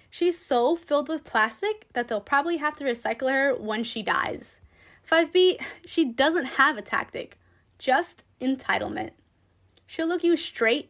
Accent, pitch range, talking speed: American, 220-320 Hz, 150 wpm